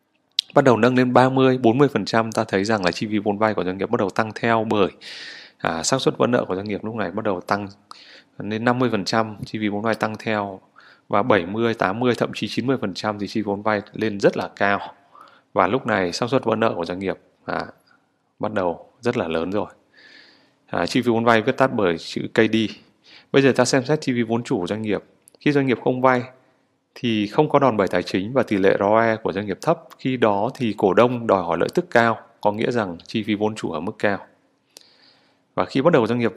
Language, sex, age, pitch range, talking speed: Vietnamese, male, 20-39, 105-125 Hz, 235 wpm